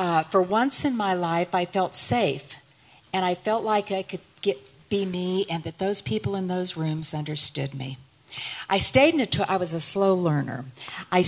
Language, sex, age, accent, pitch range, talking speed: English, female, 50-69, American, 150-195 Hz, 200 wpm